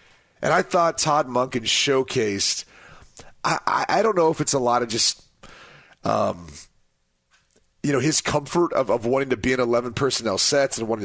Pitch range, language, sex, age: 120-145 Hz, English, male, 30-49